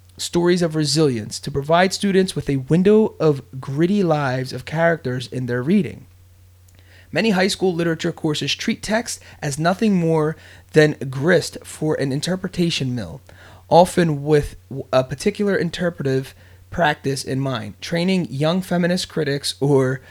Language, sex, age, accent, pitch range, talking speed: English, male, 30-49, American, 130-170 Hz, 135 wpm